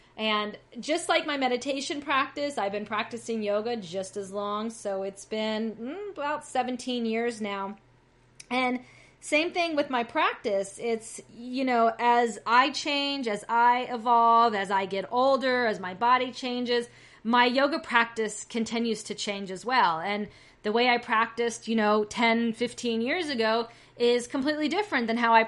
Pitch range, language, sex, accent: 210-250 Hz, English, female, American